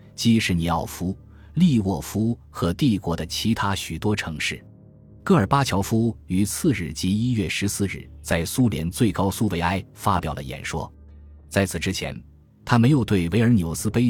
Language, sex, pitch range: Chinese, male, 85-110 Hz